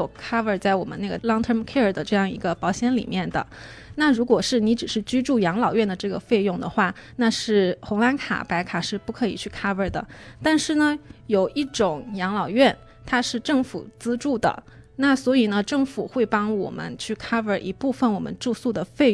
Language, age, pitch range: Chinese, 20-39, 195-240 Hz